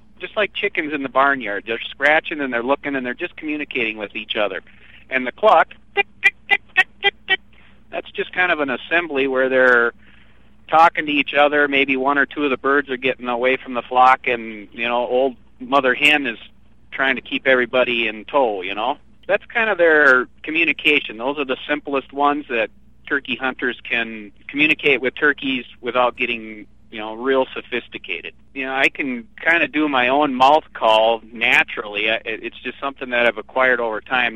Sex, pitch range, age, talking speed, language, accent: male, 110-140 Hz, 50-69, 180 wpm, English, American